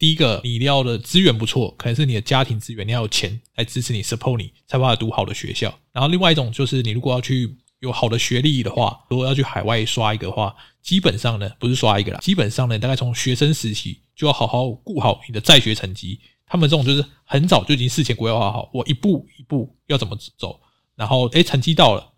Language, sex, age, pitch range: Chinese, male, 20-39, 115-140 Hz